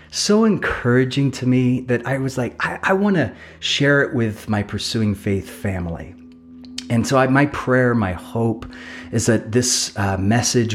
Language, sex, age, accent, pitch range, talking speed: English, male, 30-49, American, 105-140 Hz, 160 wpm